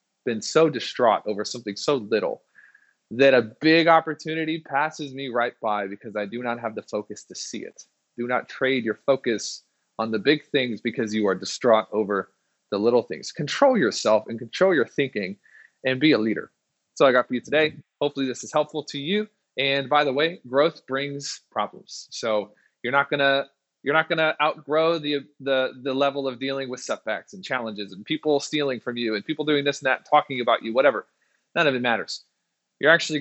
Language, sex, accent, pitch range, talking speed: English, male, American, 115-150 Hz, 200 wpm